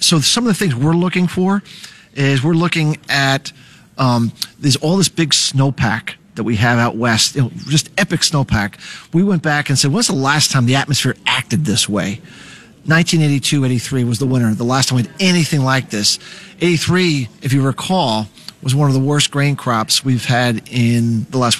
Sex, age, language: male, 40-59, English